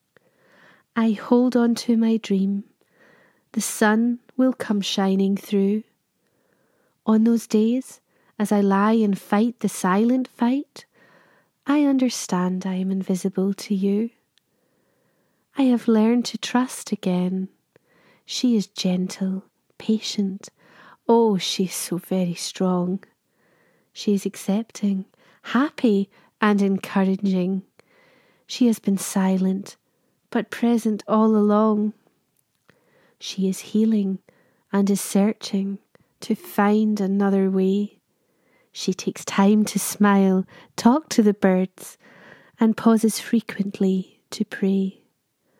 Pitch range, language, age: 195-225 Hz, English, 30-49